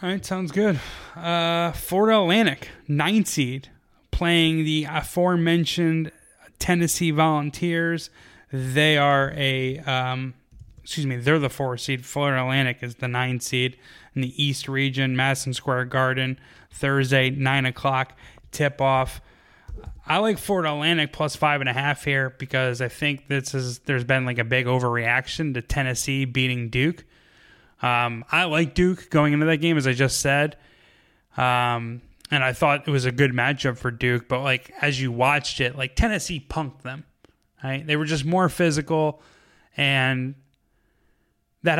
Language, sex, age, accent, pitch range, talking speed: English, male, 20-39, American, 130-155 Hz, 155 wpm